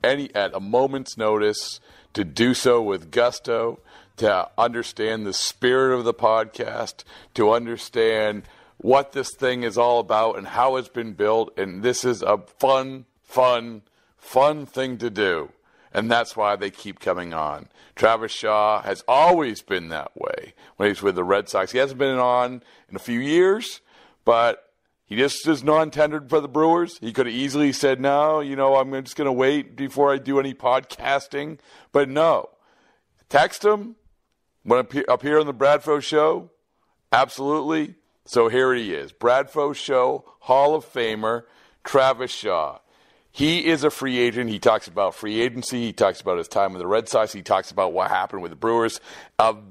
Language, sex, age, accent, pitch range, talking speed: English, male, 50-69, American, 115-140 Hz, 175 wpm